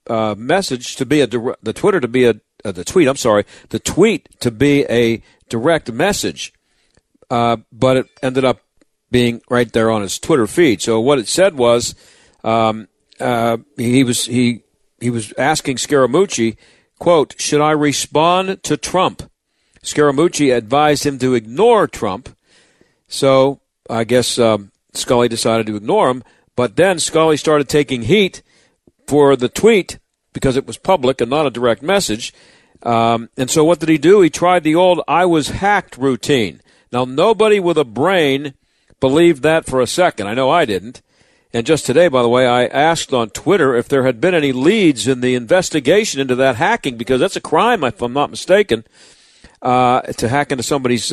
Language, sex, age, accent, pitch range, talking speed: English, male, 50-69, American, 120-150 Hz, 175 wpm